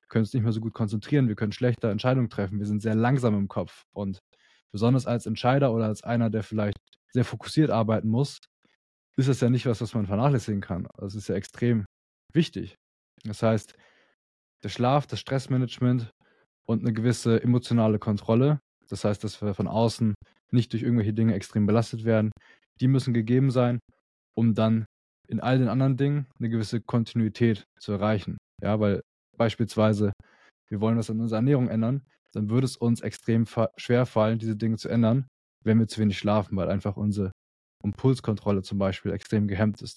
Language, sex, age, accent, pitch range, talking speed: German, male, 20-39, German, 105-125 Hz, 180 wpm